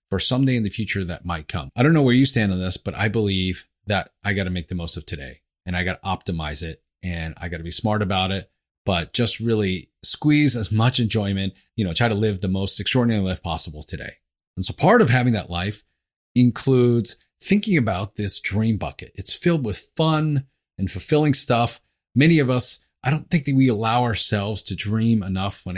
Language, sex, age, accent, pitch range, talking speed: English, male, 30-49, American, 95-125 Hz, 220 wpm